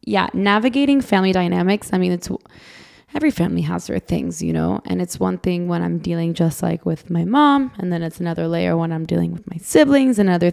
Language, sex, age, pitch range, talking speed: English, female, 20-39, 170-200 Hz, 215 wpm